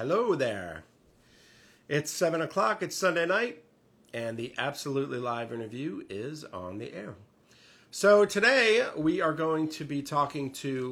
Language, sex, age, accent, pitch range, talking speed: English, male, 40-59, American, 110-140 Hz, 145 wpm